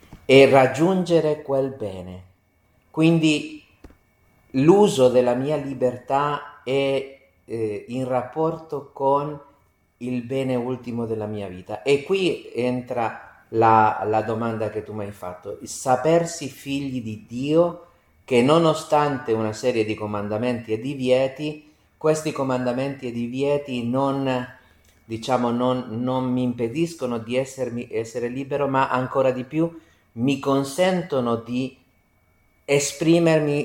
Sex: male